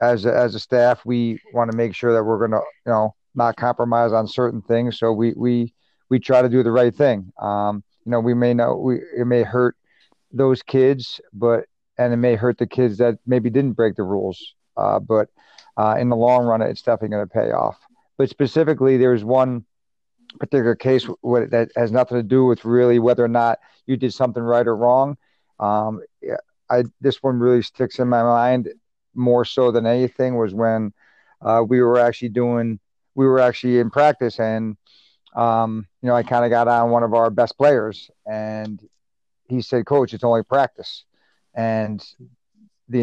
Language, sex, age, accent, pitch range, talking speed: English, male, 50-69, American, 115-125 Hz, 195 wpm